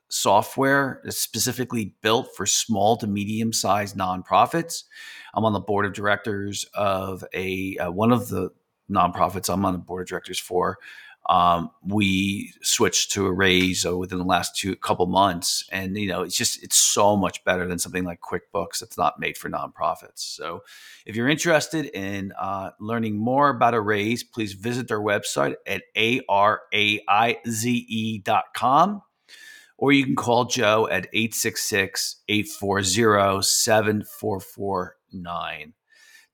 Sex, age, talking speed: male, 40-59, 145 wpm